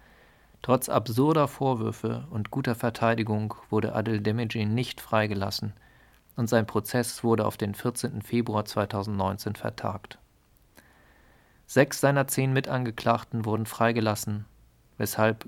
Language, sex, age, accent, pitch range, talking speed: German, male, 40-59, German, 105-120 Hz, 110 wpm